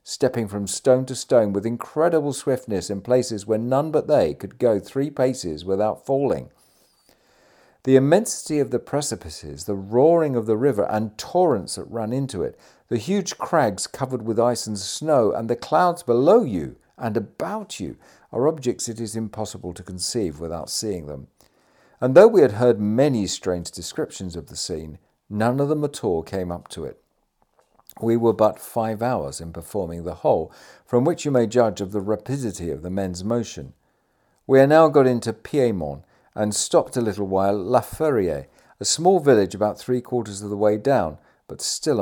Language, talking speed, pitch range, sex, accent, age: English, 185 wpm, 100-130 Hz, male, British, 50-69